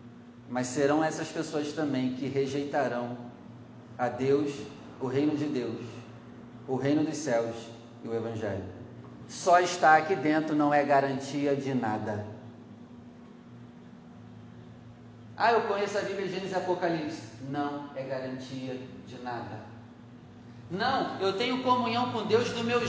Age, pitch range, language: 30-49, 120-195 Hz, Portuguese